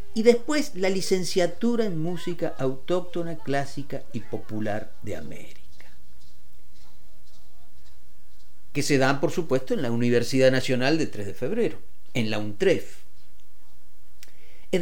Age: 50-69